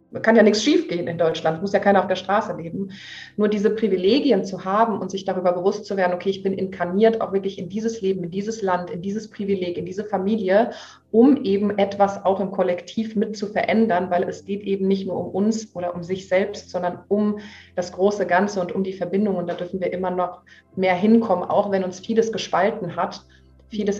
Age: 30-49